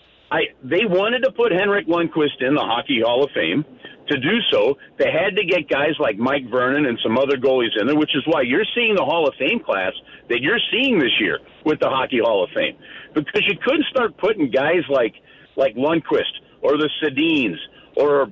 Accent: American